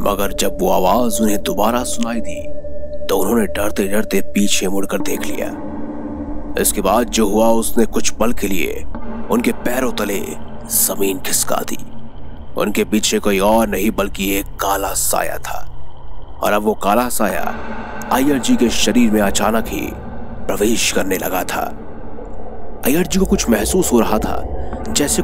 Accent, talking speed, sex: native, 150 wpm, male